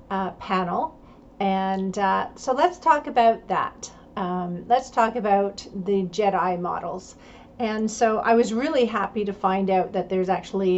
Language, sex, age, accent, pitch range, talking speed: English, female, 40-59, American, 185-215 Hz, 155 wpm